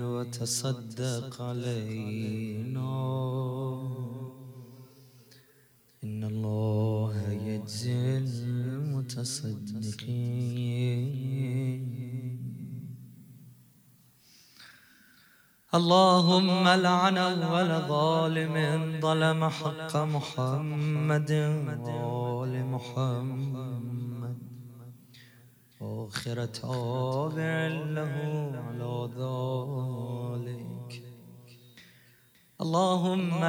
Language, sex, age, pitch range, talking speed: Arabic, male, 30-49, 120-150 Hz, 35 wpm